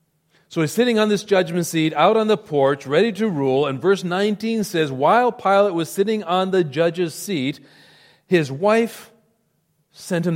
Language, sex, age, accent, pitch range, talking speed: English, male, 40-59, American, 140-180 Hz, 175 wpm